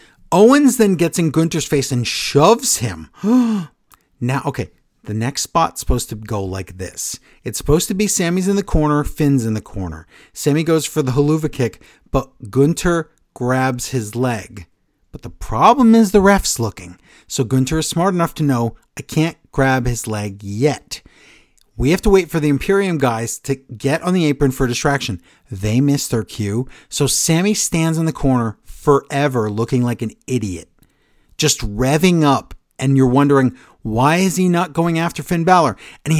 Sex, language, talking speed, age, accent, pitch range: male, English, 180 wpm, 50-69, American, 125-170 Hz